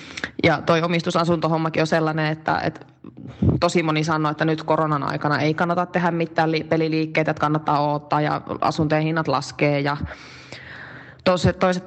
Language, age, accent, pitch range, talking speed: Finnish, 20-39, native, 155-180 Hz, 140 wpm